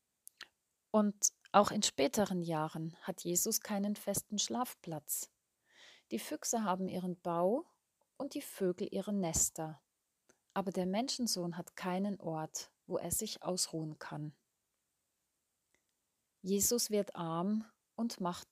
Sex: female